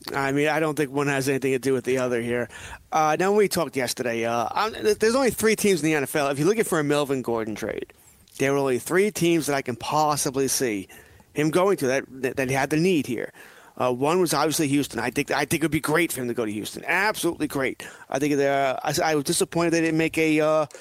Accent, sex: American, male